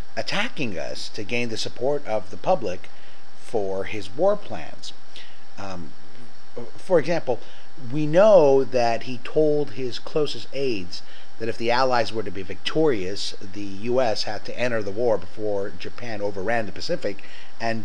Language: English